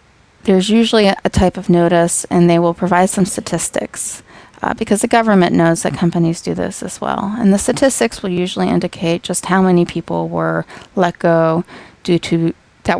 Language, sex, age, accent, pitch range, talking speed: English, female, 20-39, American, 170-205 Hz, 180 wpm